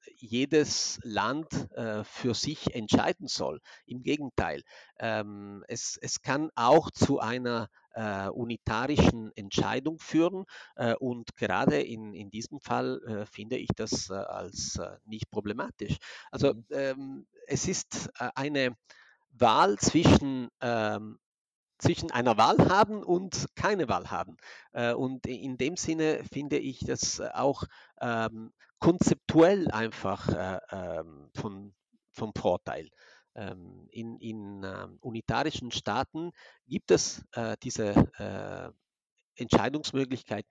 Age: 50-69